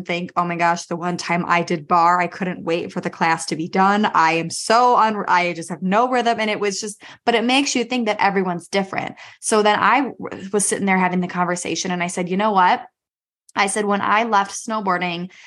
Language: English